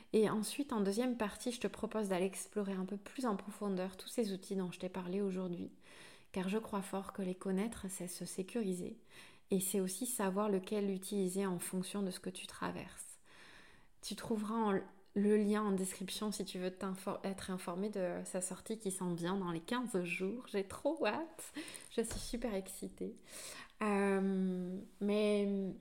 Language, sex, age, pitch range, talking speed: French, female, 20-39, 185-215 Hz, 180 wpm